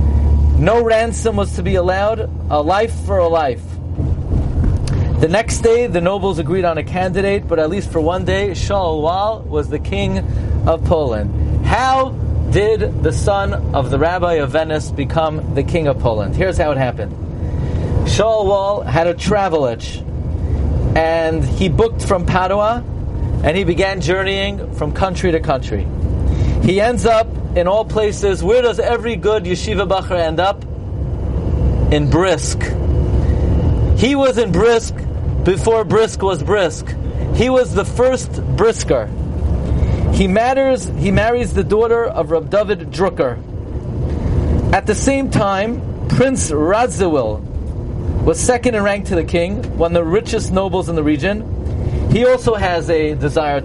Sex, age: male, 40-59